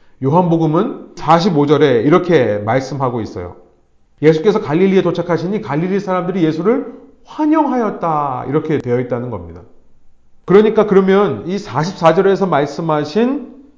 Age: 30-49